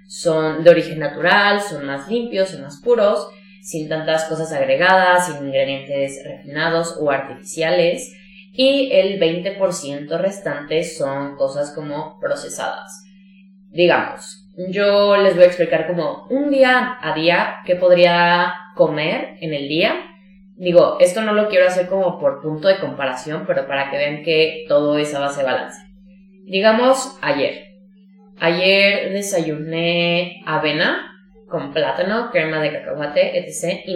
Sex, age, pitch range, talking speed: female, 20-39, 160-195 Hz, 140 wpm